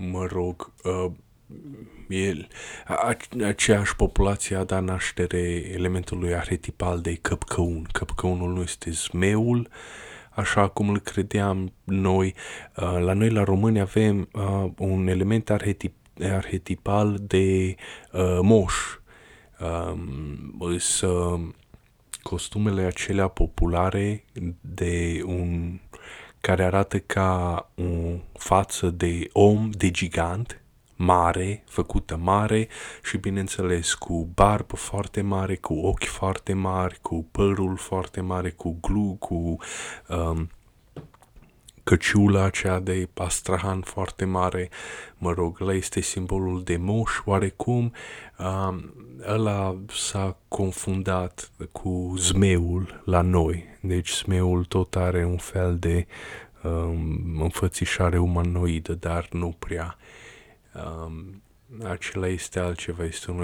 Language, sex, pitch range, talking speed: Romanian, male, 85-100 Hz, 105 wpm